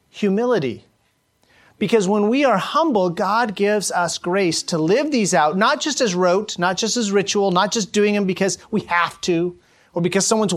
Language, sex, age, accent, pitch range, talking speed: English, male, 40-59, American, 170-220 Hz, 185 wpm